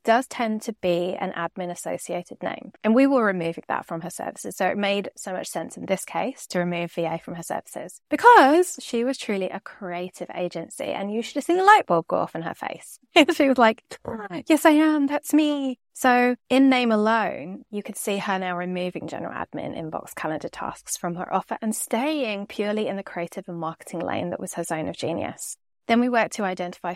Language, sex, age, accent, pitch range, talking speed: English, female, 20-39, British, 180-250 Hz, 215 wpm